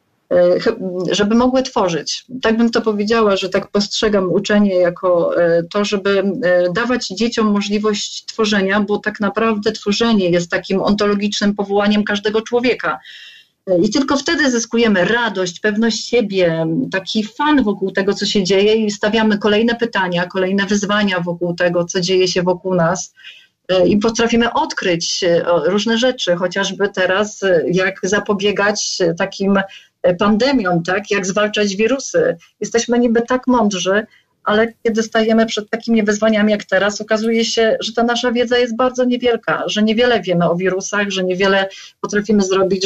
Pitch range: 195-235 Hz